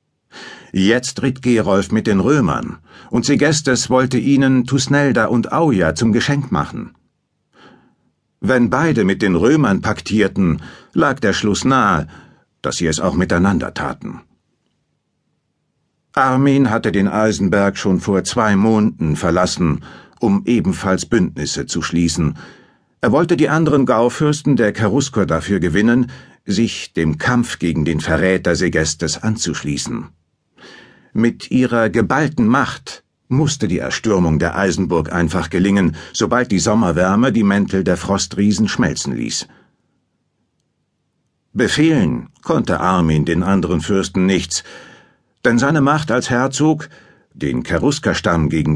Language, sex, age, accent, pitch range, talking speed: German, male, 60-79, German, 90-125 Hz, 120 wpm